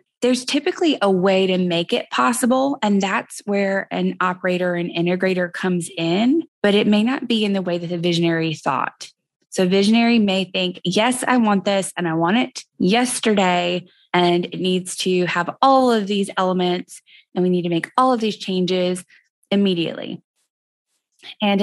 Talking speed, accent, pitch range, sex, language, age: 175 wpm, American, 180-215 Hz, female, English, 20-39